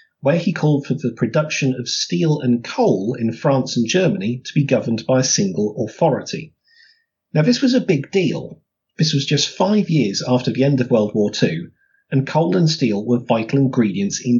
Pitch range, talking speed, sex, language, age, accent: 125-165 Hz, 195 wpm, male, English, 40-59, British